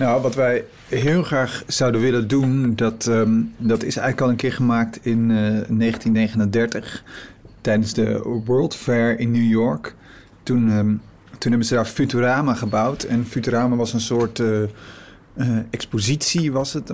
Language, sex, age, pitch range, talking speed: Dutch, male, 30-49, 115-135 Hz, 160 wpm